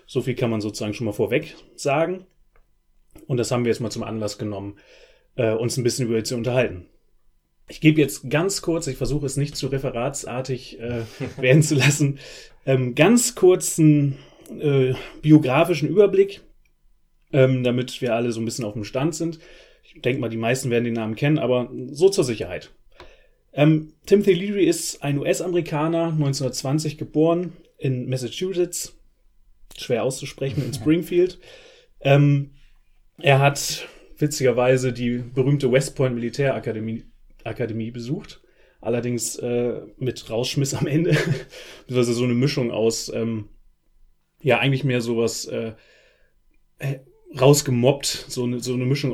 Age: 30-49